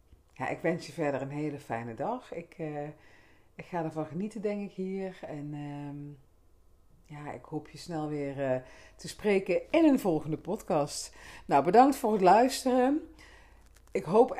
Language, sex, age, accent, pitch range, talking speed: Dutch, female, 40-59, Dutch, 150-210 Hz, 165 wpm